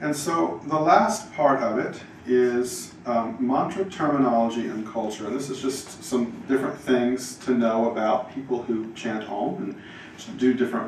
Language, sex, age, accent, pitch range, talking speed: English, male, 40-59, American, 115-135 Hz, 160 wpm